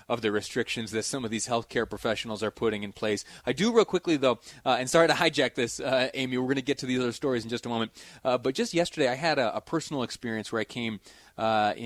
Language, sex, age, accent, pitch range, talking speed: English, male, 30-49, American, 110-130 Hz, 265 wpm